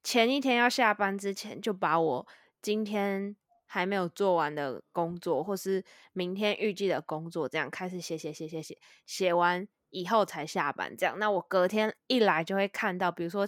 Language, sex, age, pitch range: Chinese, female, 20-39, 180-235 Hz